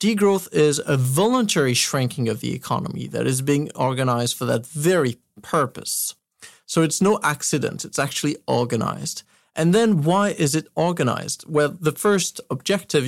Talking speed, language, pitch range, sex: 150 wpm, English, 140-170 Hz, male